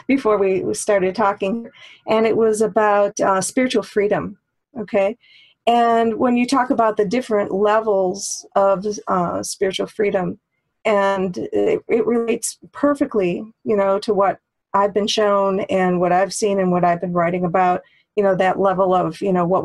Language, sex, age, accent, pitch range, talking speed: English, female, 40-59, American, 185-220 Hz, 165 wpm